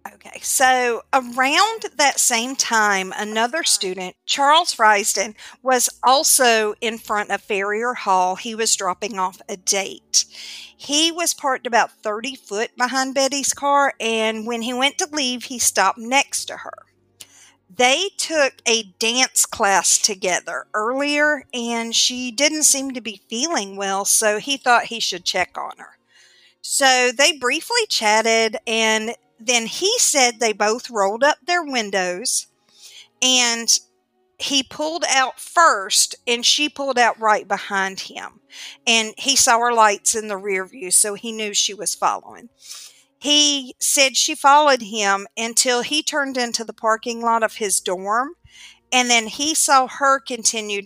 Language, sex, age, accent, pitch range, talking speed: English, female, 50-69, American, 215-275 Hz, 150 wpm